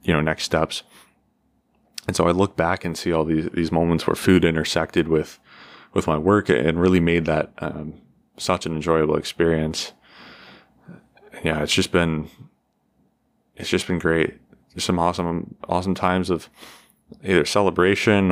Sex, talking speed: male, 155 wpm